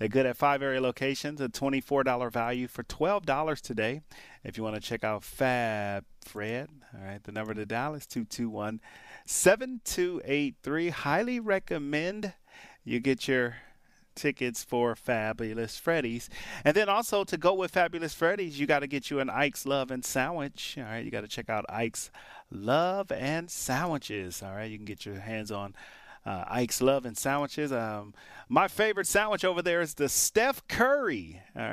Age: 30-49